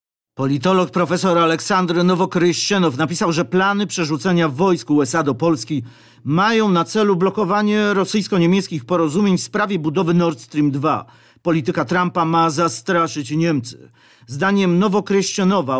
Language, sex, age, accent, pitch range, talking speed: Polish, male, 50-69, native, 160-200 Hz, 120 wpm